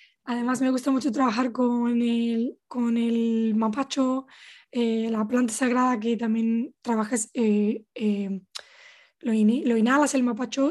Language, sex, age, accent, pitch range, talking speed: English, female, 10-29, Spanish, 235-280 Hz, 140 wpm